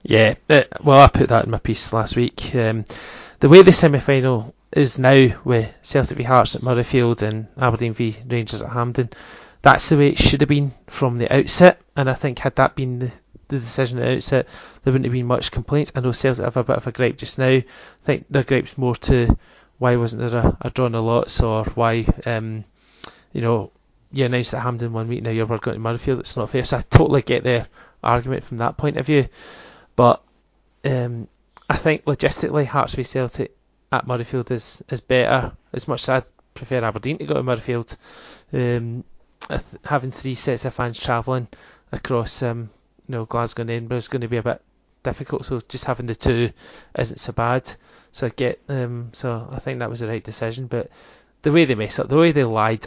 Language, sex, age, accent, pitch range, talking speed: English, male, 20-39, British, 115-135 Hz, 210 wpm